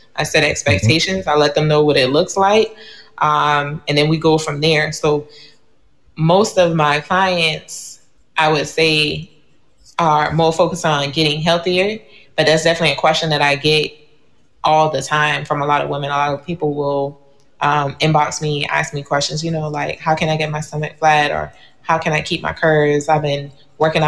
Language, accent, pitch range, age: English, American, 145-165 Hz, 20-39